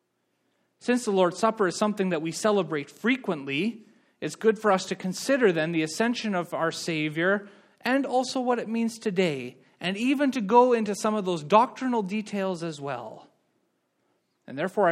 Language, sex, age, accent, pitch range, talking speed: English, male, 30-49, American, 155-210 Hz, 170 wpm